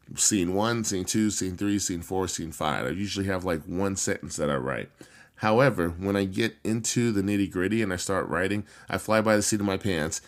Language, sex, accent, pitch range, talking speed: English, male, American, 95-115 Hz, 220 wpm